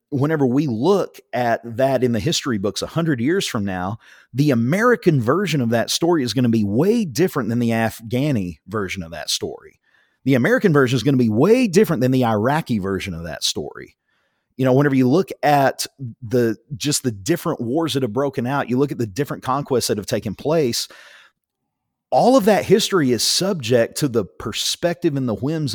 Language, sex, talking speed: English, male, 200 wpm